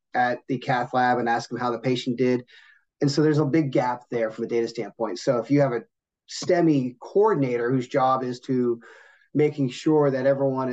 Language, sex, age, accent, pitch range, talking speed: English, male, 30-49, American, 120-140 Hz, 205 wpm